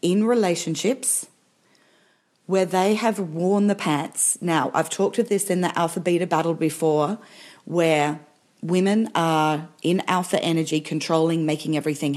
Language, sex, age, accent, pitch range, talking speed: English, female, 40-59, Australian, 155-195 Hz, 140 wpm